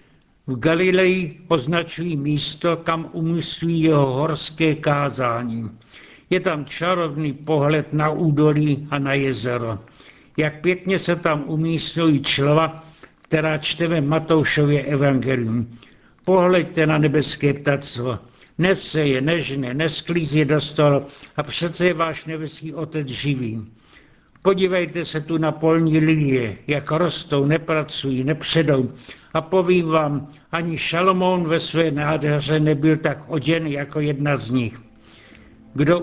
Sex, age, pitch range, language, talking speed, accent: male, 70-89, 140-165 Hz, Czech, 120 wpm, native